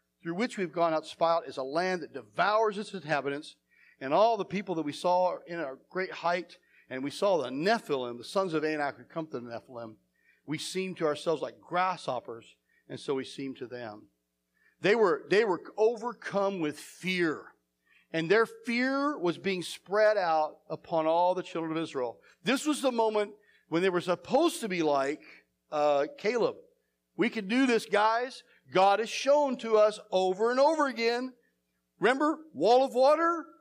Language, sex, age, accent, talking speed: English, male, 40-59, American, 180 wpm